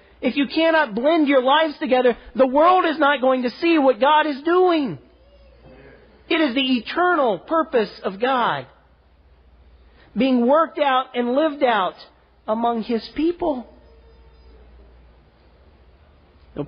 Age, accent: 40-59, American